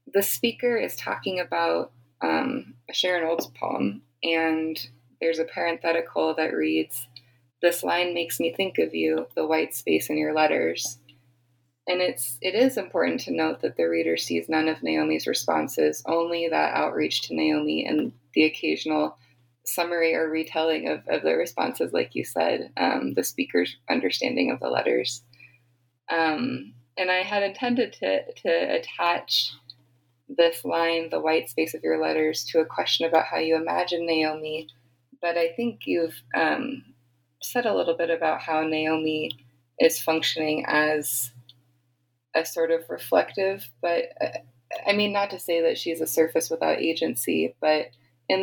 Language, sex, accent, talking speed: English, female, American, 155 wpm